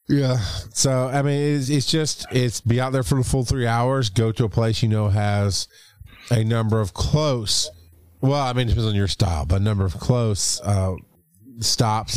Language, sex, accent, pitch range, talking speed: English, male, American, 100-125 Hz, 205 wpm